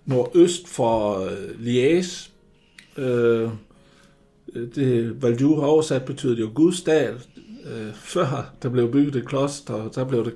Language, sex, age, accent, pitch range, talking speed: Danish, male, 60-79, native, 115-150 Hz, 125 wpm